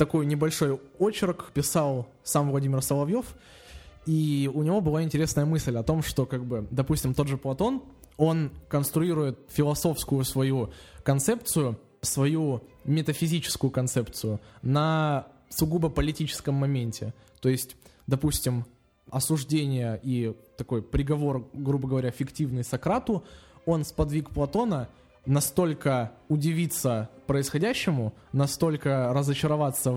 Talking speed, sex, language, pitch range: 105 wpm, male, Russian, 130-160 Hz